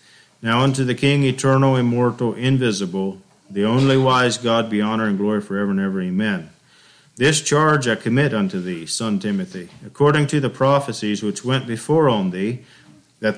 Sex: male